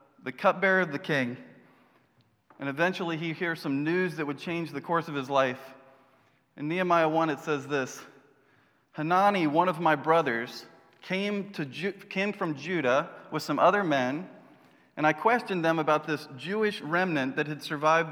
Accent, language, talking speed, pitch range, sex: American, English, 170 wpm, 145-185 Hz, male